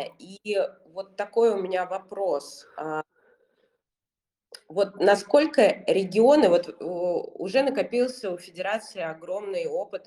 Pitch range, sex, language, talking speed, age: 180-230 Hz, female, Russian, 95 wpm, 20-39